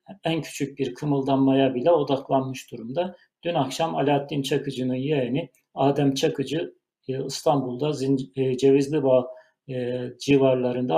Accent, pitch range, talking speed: native, 130-150 Hz, 100 wpm